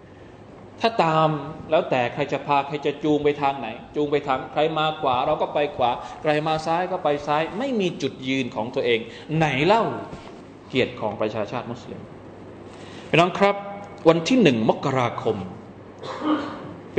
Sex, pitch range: male, 120-190 Hz